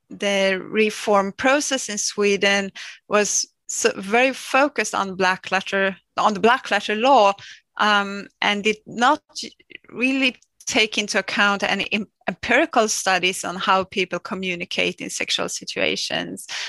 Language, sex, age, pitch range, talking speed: English, female, 30-49, 180-220 Hz, 120 wpm